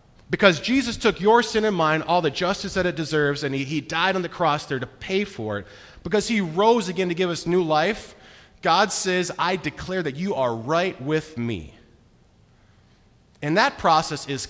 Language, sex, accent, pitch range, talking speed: English, male, American, 115-185 Hz, 200 wpm